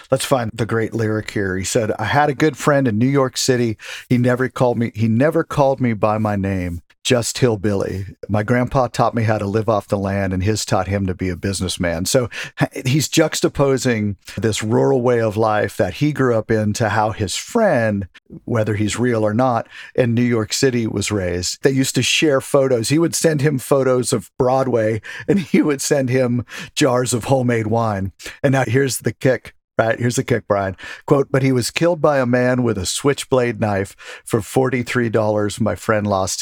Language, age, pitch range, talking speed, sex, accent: English, 50-69, 105-130 Hz, 205 wpm, male, American